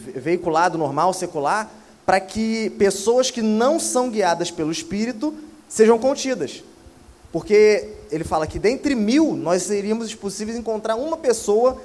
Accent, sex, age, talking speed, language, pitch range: Brazilian, male, 20-39, 130 wpm, Portuguese, 165-220 Hz